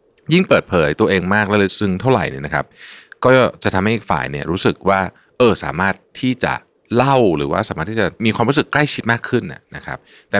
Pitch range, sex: 80-120 Hz, male